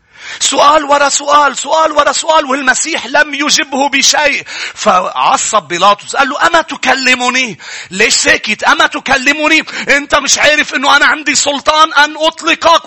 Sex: male